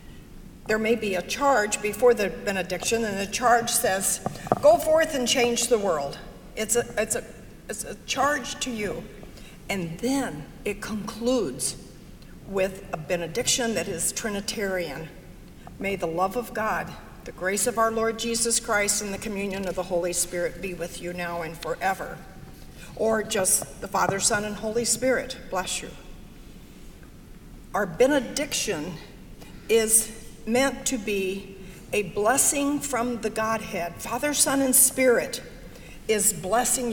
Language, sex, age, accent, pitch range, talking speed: English, female, 60-79, American, 205-260 Hz, 140 wpm